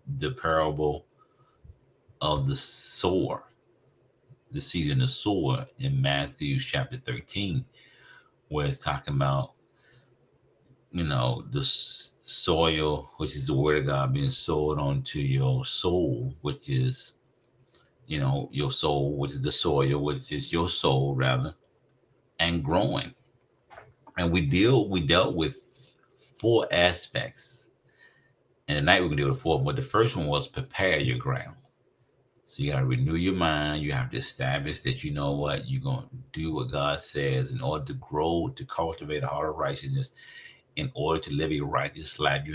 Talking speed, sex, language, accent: 160 wpm, male, English, American